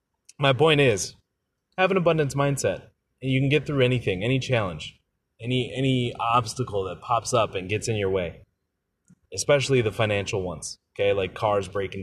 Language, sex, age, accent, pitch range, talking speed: English, male, 30-49, American, 110-140 Hz, 170 wpm